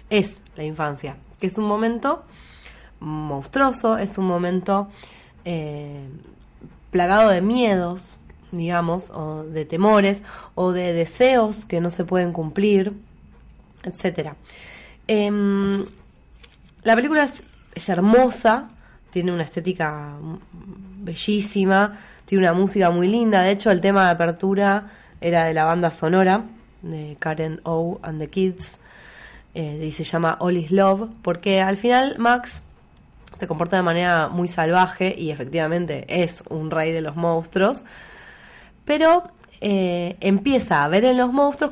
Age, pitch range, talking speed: 20-39, 160-205 Hz, 135 wpm